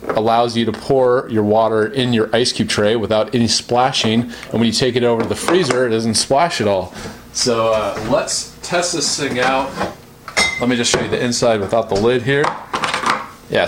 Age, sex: 30-49, male